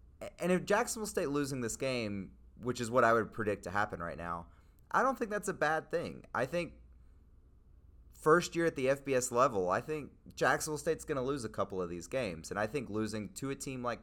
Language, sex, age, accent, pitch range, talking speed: English, male, 30-49, American, 95-130 Hz, 225 wpm